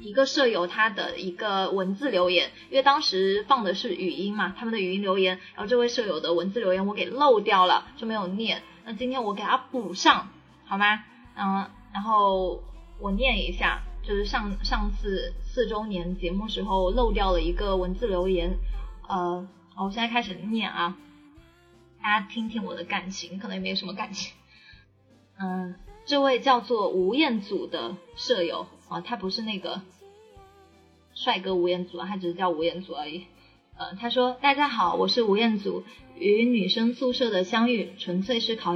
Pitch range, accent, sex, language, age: 180-235 Hz, native, female, Chinese, 20-39